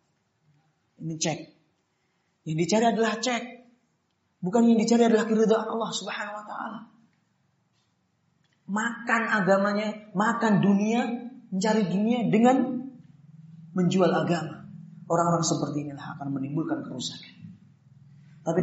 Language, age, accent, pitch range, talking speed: Indonesian, 30-49, native, 155-200 Hz, 95 wpm